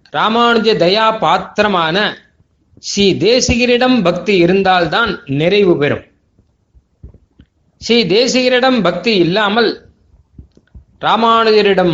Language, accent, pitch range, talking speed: Tamil, native, 175-225 Hz, 70 wpm